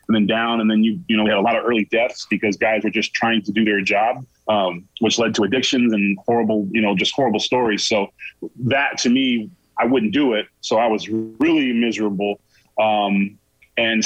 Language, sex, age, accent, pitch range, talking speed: English, male, 30-49, American, 110-130 Hz, 220 wpm